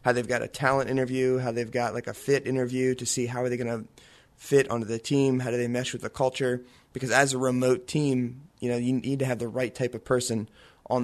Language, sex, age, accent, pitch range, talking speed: English, male, 20-39, American, 115-130 Hz, 260 wpm